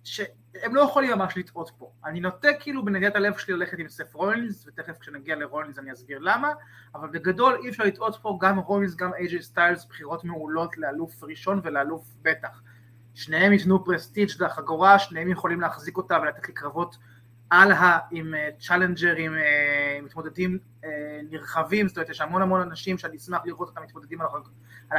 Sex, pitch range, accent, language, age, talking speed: male, 155-210 Hz, native, Hebrew, 20-39, 165 wpm